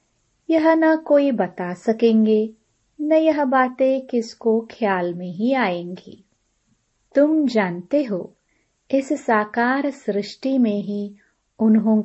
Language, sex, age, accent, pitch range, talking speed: Hindi, female, 30-49, native, 190-245 Hz, 110 wpm